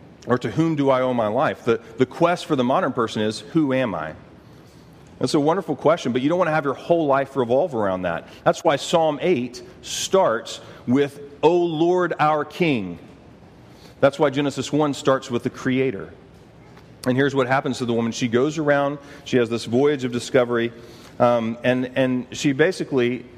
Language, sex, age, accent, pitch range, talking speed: English, male, 40-59, American, 120-145 Hz, 190 wpm